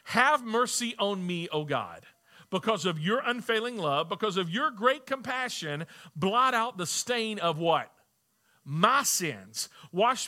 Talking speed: 145 wpm